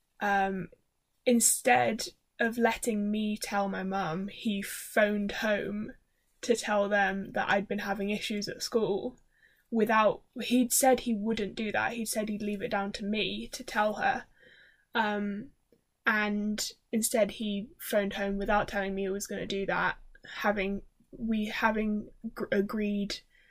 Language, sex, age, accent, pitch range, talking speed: English, female, 10-29, British, 205-235 Hz, 145 wpm